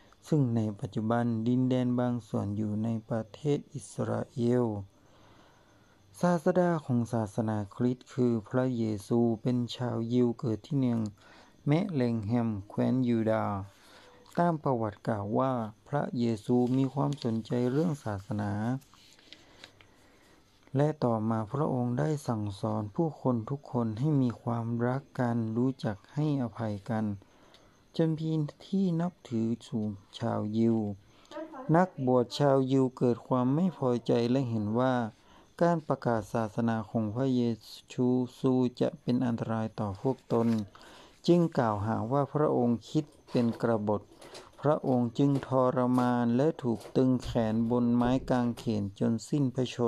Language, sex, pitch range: Thai, male, 110-135 Hz